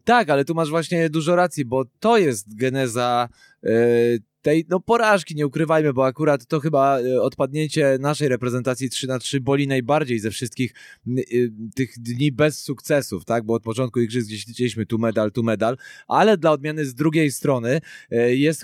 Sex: male